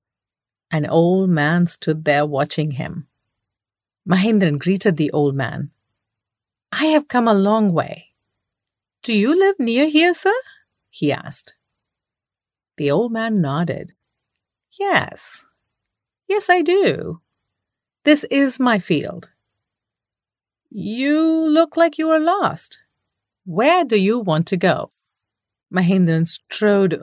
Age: 40-59